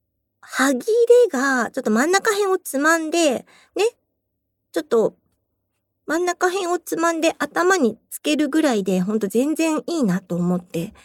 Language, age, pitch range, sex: Japanese, 50-69, 215-325 Hz, female